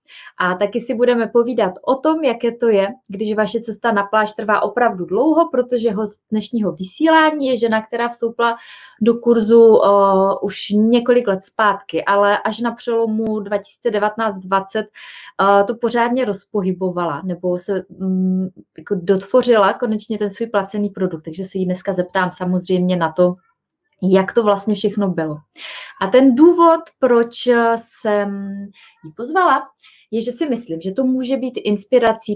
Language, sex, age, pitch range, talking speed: Czech, female, 20-39, 185-235 Hz, 150 wpm